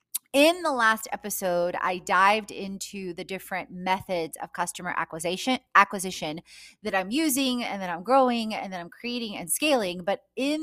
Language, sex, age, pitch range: English, female, 20-39, 180-225 Hz